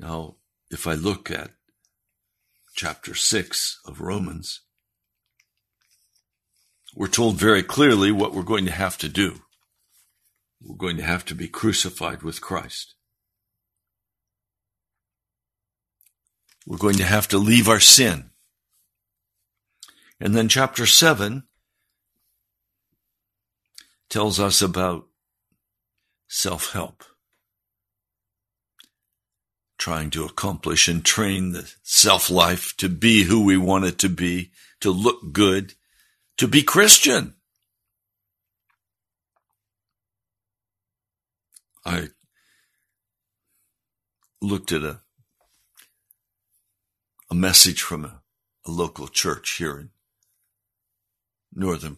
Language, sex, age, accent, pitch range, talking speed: English, male, 60-79, American, 95-110 Hz, 90 wpm